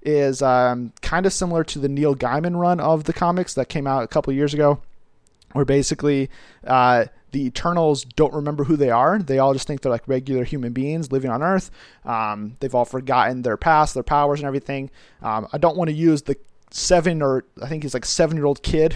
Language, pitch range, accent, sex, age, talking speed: English, 130-155 Hz, American, male, 30-49, 210 wpm